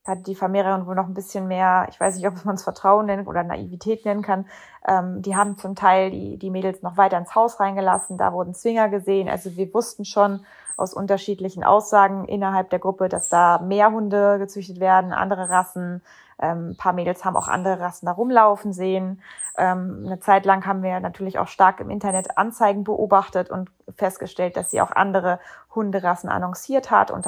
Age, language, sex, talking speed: 20-39, German, female, 185 wpm